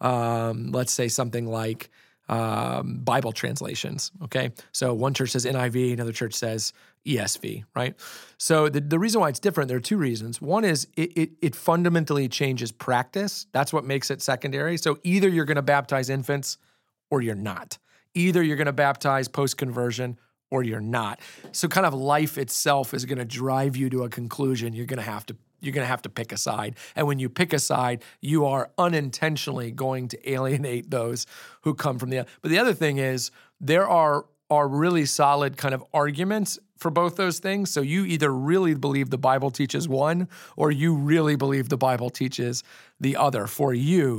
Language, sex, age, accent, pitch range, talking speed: English, male, 40-59, American, 125-150 Hz, 195 wpm